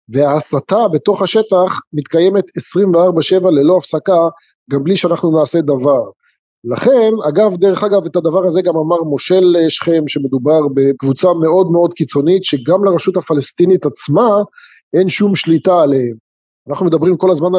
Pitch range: 150-195 Hz